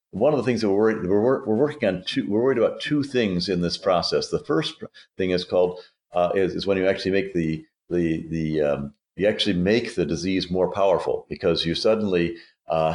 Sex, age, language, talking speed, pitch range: male, 50-69, English, 220 wpm, 80-95 Hz